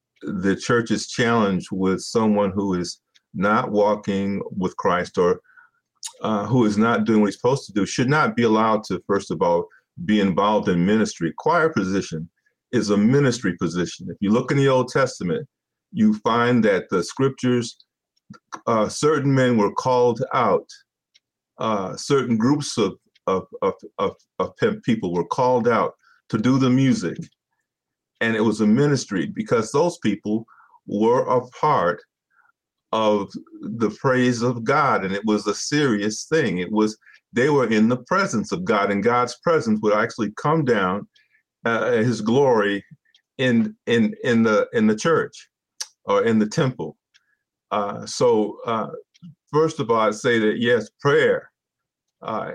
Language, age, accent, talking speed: English, 50-69, American, 160 wpm